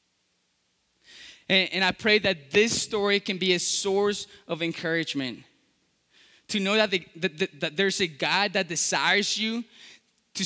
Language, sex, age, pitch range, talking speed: English, male, 10-29, 150-205 Hz, 150 wpm